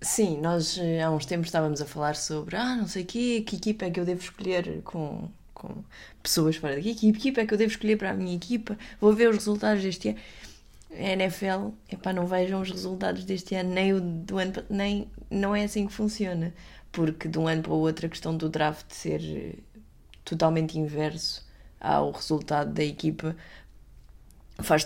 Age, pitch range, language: 20-39, 160-200 Hz, Portuguese